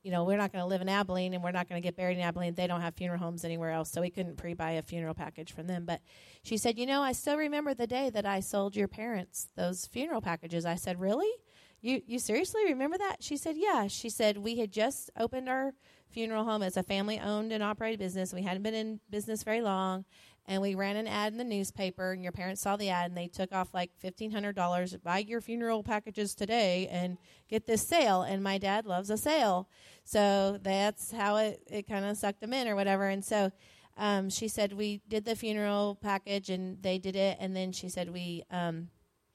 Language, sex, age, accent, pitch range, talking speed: English, female, 30-49, American, 185-220 Hz, 235 wpm